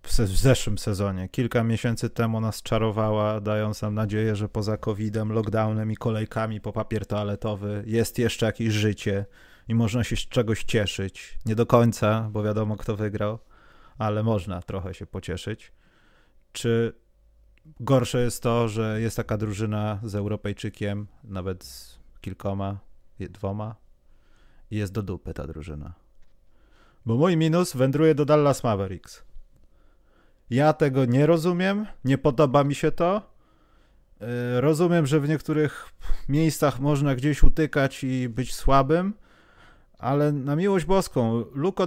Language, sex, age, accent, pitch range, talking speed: Polish, male, 30-49, native, 100-150 Hz, 135 wpm